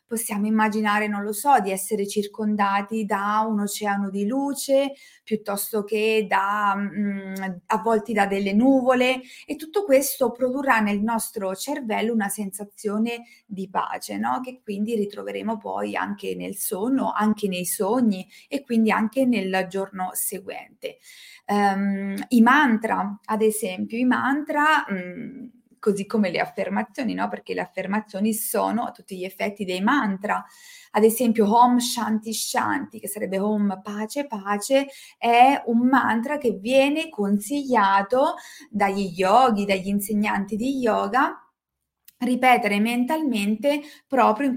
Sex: female